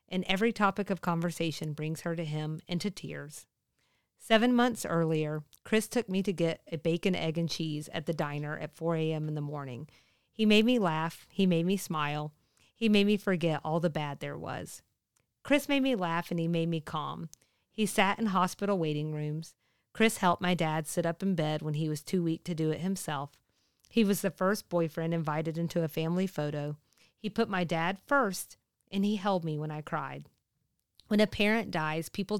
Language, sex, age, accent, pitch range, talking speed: English, female, 40-59, American, 155-195 Hz, 200 wpm